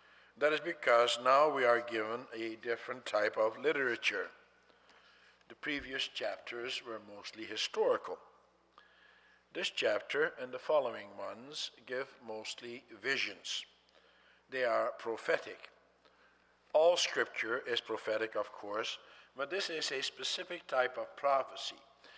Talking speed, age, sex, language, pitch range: 120 wpm, 60-79, male, English, 120-175 Hz